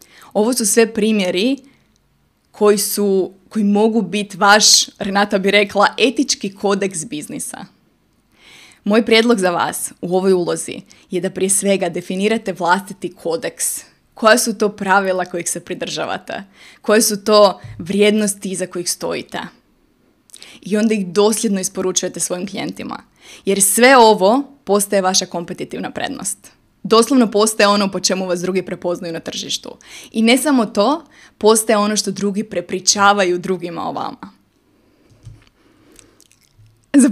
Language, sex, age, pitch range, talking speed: Croatian, female, 20-39, 185-225 Hz, 130 wpm